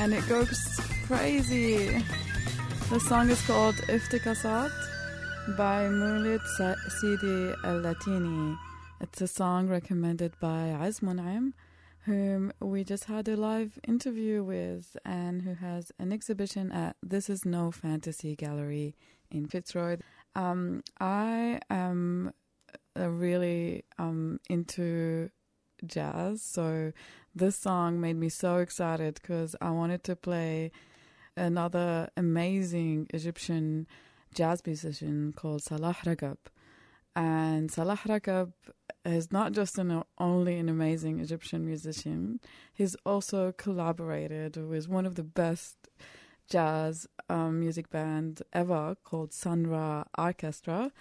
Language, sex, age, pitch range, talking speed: English, female, 20-39, 160-190 Hz, 115 wpm